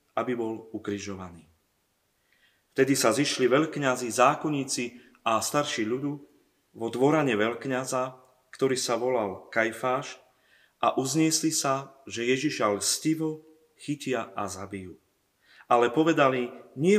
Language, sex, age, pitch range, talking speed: Slovak, male, 30-49, 115-150 Hz, 105 wpm